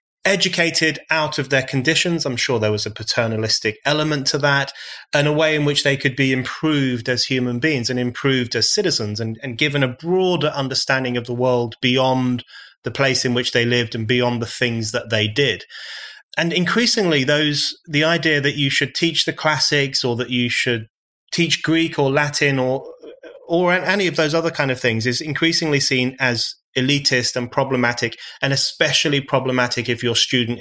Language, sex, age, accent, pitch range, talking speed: English, male, 30-49, British, 125-155 Hz, 185 wpm